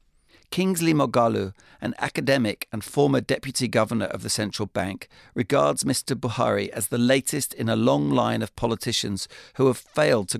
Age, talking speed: 50-69, 160 wpm